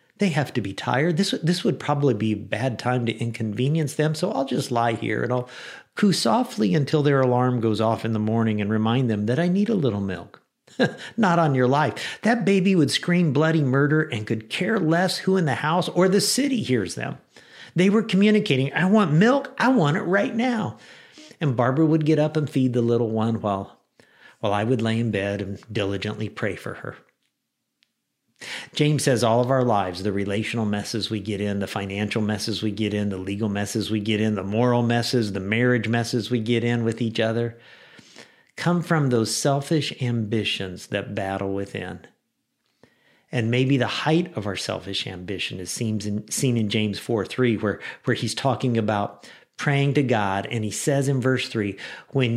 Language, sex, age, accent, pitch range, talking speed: English, male, 50-69, American, 105-145 Hz, 195 wpm